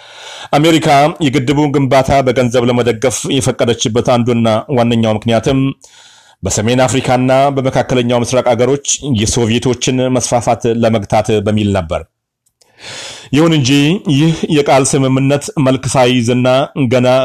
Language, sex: Amharic, male